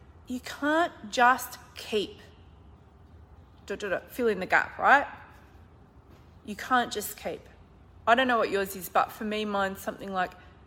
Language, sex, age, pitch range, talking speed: English, female, 20-39, 165-215 Hz, 135 wpm